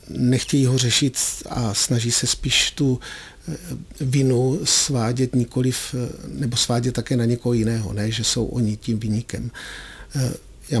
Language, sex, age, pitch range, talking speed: Czech, male, 50-69, 115-130 Hz, 140 wpm